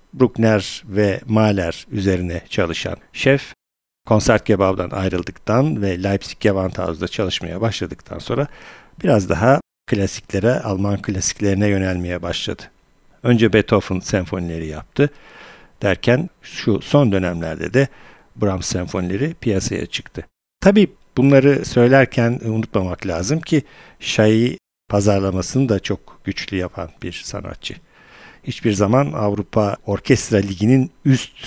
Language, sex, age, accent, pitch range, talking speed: Turkish, male, 50-69, native, 95-120 Hz, 105 wpm